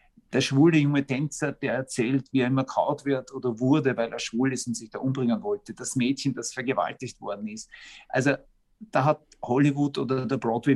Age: 50-69